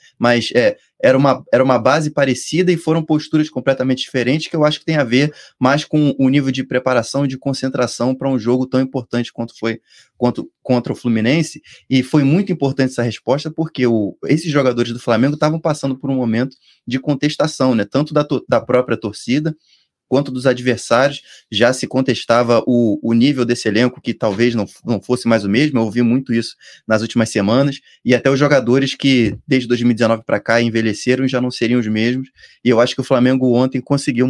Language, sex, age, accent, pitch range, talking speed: Portuguese, male, 20-39, Brazilian, 120-135 Hz, 195 wpm